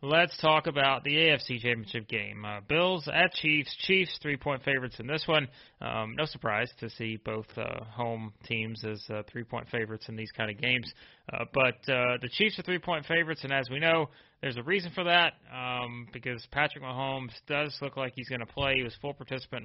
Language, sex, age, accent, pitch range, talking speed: English, male, 30-49, American, 120-150 Hz, 200 wpm